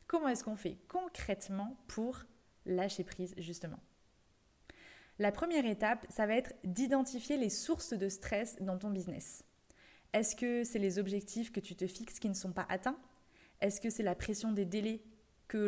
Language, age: French, 20-39